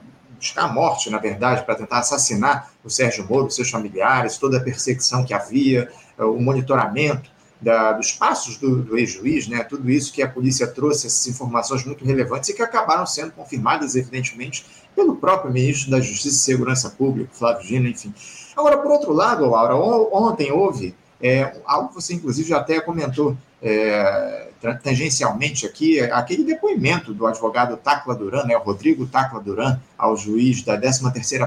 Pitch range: 120-150 Hz